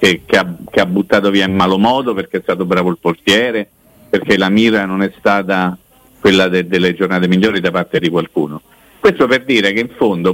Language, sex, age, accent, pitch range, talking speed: Italian, male, 50-69, native, 95-125 Hz, 190 wpm